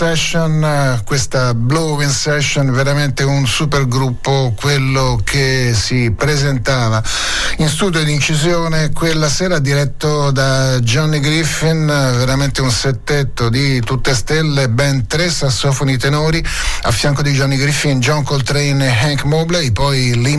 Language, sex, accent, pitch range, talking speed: Italian, male, native, 120-145 Hz, 130 wpm